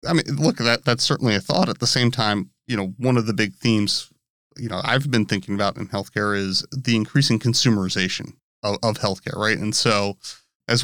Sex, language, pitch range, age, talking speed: male, English, 105-130 Hz, 30-49, 210 wpm